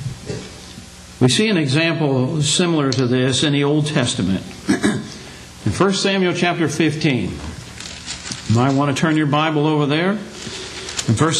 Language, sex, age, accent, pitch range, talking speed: English, male, 60-79, American, 155-205 Hz, 140 wpm